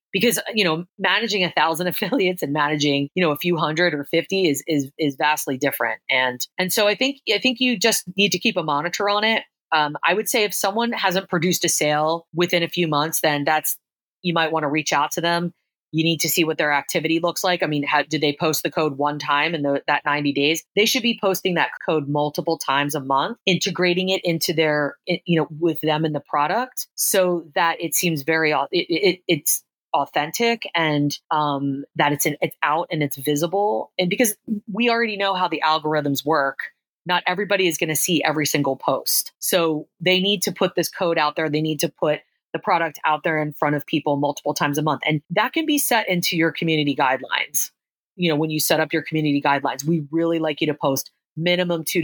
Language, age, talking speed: English, 30-49, 225 wpm